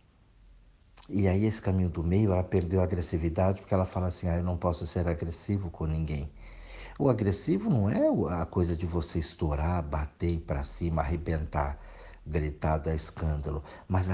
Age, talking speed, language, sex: 60-79, 170 wpm, Portuguese, male